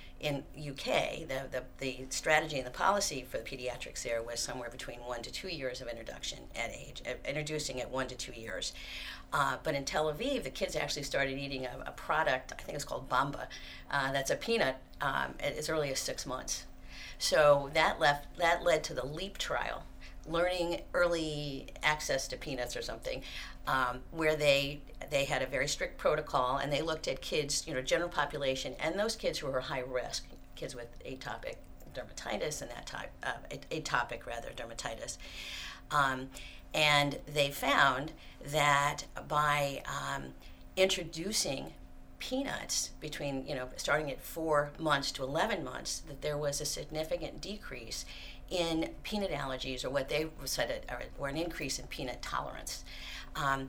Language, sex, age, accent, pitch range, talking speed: English, female, 50-69, American, 130-160 Hz, 170 wpm